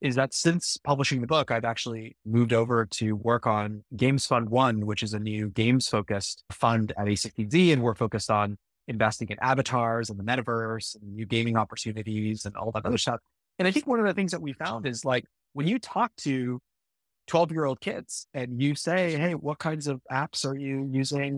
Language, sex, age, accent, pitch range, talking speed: English, male, 30-49, American, 115-150 Hz, 200 wpm